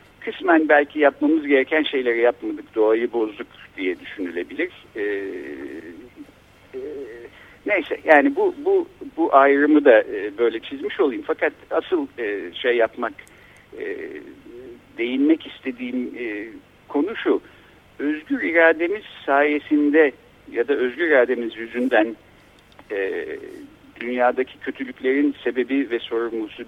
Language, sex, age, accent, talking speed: Turkish, male, 60-79, native, 110 wpm